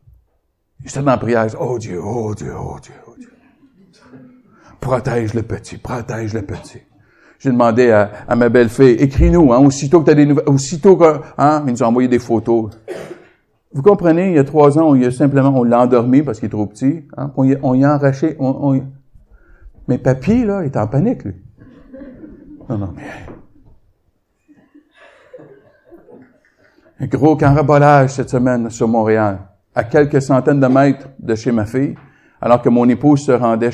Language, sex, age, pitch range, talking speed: French, male, 60-79, 115-150 Hz, 185 wpm